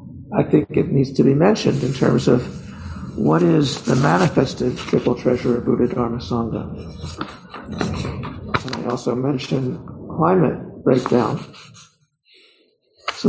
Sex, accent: male, American